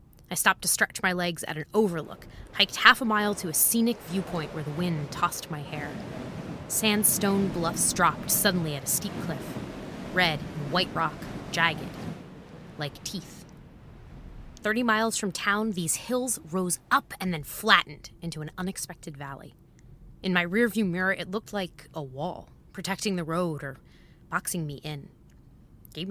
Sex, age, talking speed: female, 20-39, 160 wpm